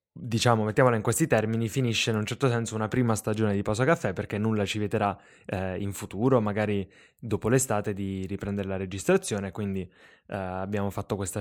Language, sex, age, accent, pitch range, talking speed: Italian, male, 10-29, native, 100-115 Hz, 185 wpm